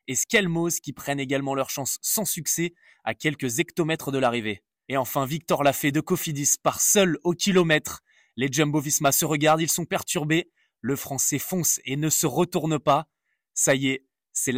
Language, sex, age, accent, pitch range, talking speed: French, male, 20-39, French, 135-160 Hz, 180 wpm